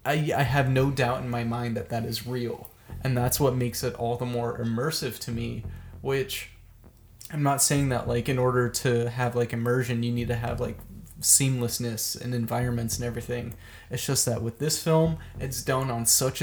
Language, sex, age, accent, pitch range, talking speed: English, male, 20-39, American, 115-135 Hz, 200 wpm